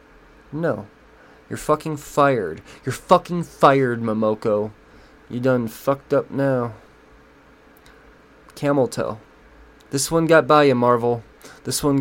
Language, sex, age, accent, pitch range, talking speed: English, male, 20-39, American, 115-145 Hz, 115 wpm